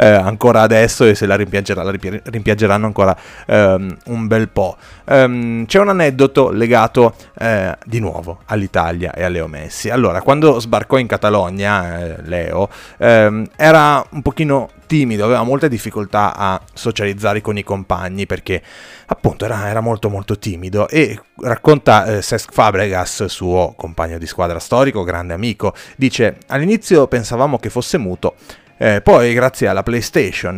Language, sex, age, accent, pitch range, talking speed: Italian, male, 30-49, native, 100-120 Hz, 150 wpm